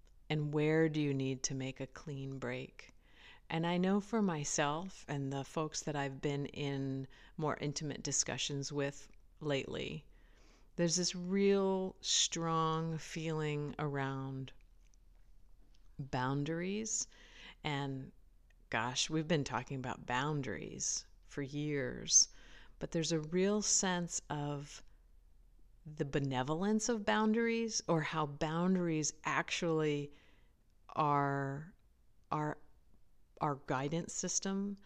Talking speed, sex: 110 wpm, female